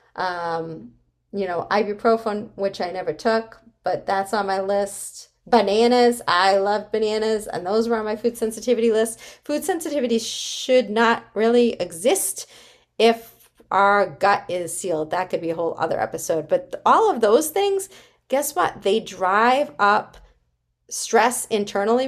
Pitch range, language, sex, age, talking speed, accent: 180-225 Hz, English, female, 30-49, 150 wpm, American